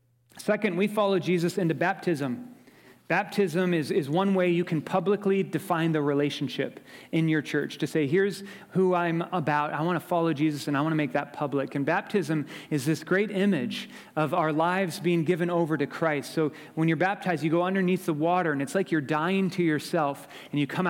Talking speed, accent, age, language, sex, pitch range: 205 wpm, American, 30-49, English, male, 145-175 Hz